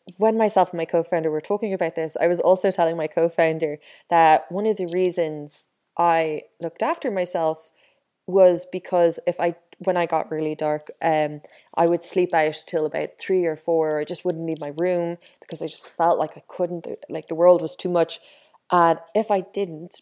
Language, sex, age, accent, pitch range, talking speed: English, female, 20-39, Irish, 160-185 Hz, 205 wpm